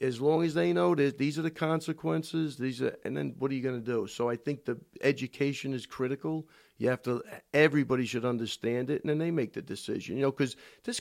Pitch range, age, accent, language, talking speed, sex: 115-140 Hz, 50-69, American, English, 240 wpm, male